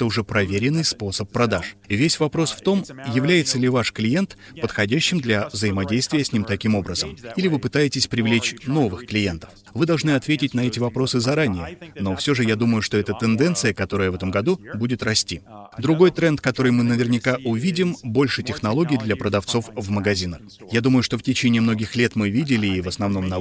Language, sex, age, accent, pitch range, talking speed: Russian, male, 30-49, native, 105-135 Hz, 185 wpm